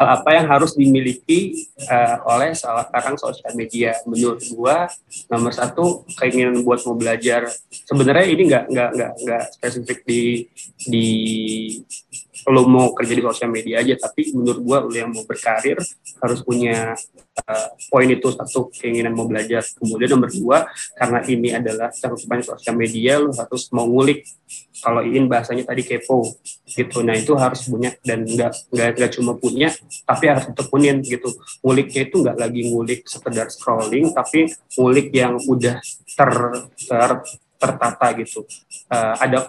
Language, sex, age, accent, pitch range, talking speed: Indonesian, male, 20-39, native, 115-130 Hz, 145 wpm